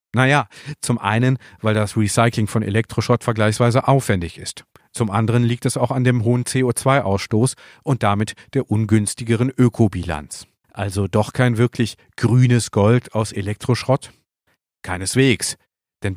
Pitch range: 100-125 Hz